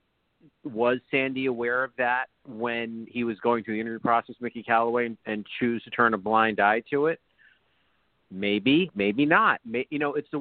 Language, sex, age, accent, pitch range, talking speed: English, male, 50-69, American, 115-150 Hz, 190 wpm